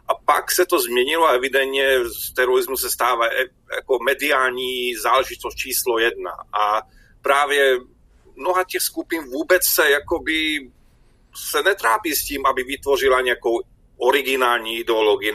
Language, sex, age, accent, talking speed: Czech, male, 40-59, native, 130 wpm